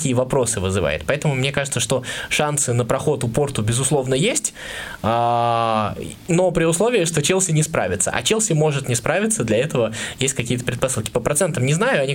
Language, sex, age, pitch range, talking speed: Russian, male, 20-39, 120-150 Hz, 175 wpm